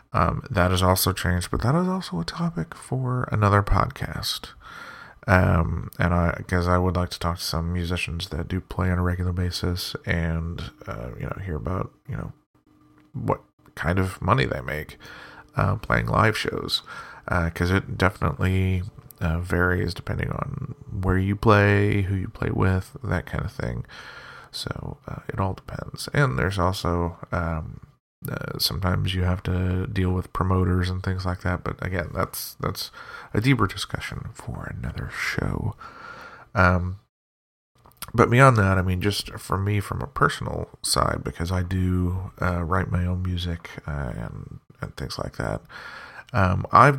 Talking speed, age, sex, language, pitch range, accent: 165 wpm, 30-49, male, English, 90-105 Hz, American